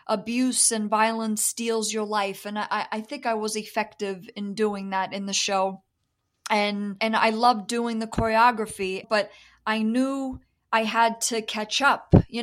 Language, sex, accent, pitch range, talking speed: English, female, American, 210-230 Hz, 170 wpm